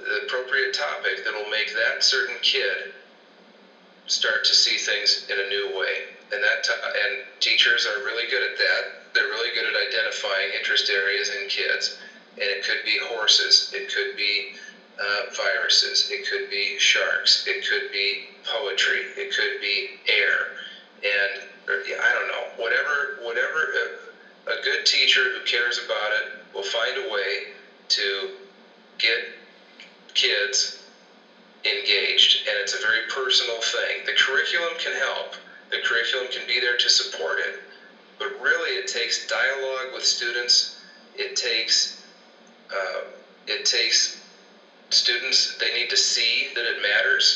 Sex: male